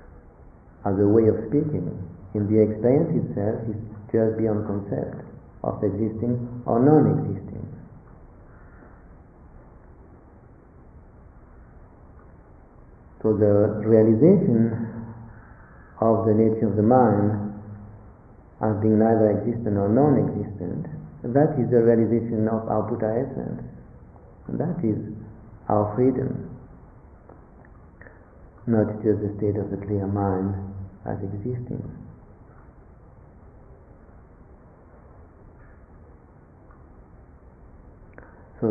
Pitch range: 100-115 Hz